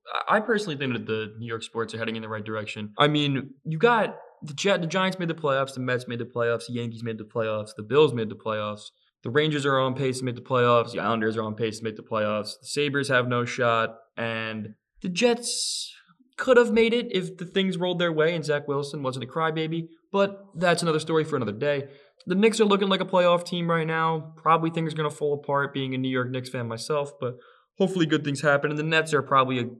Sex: male